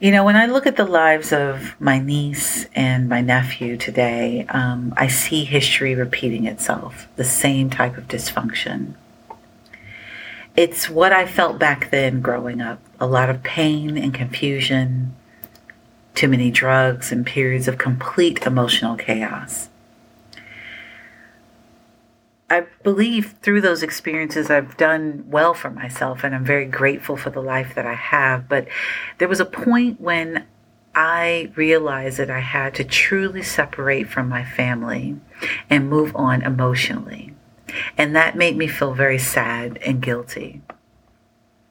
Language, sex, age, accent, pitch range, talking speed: English, female, 40-59, American, 125-160 Hz, 140 wpm